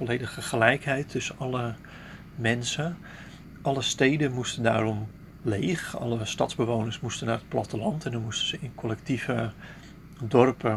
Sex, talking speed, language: male, 130 wpm, Dutch